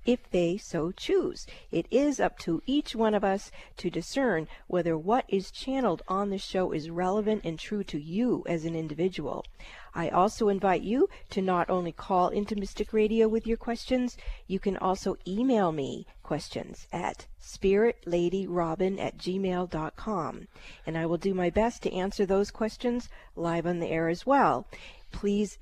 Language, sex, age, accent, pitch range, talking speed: English, female, 50-69, American, 175-220 Hz, 165 wpm